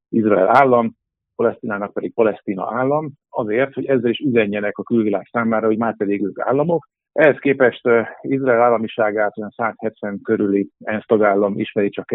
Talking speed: 160 wpm